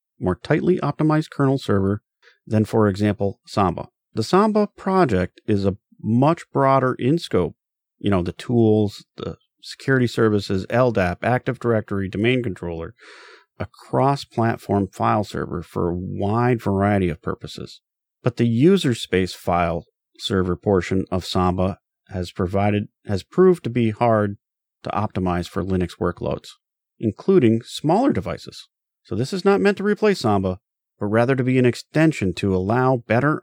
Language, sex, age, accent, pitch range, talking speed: English, male, 40-59, American, 95-130 Hz, 145 wpm